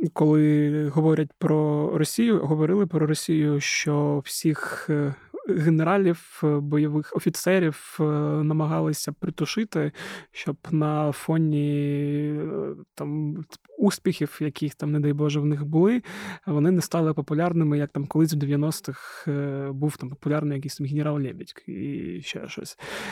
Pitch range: 150-170 Hz